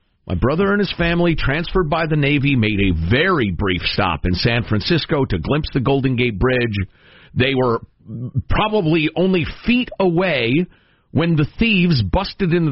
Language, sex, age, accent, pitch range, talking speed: English, male, 50-69, American, 95-145 Hz, 160 wpm